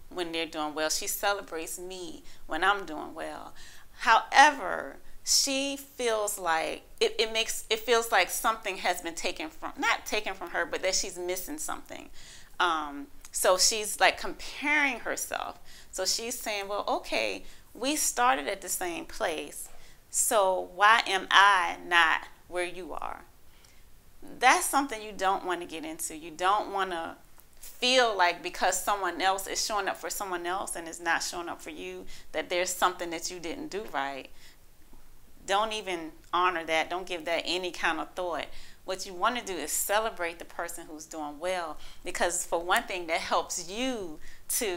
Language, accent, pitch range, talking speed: English, American, 170-220 Hz, 175 wpm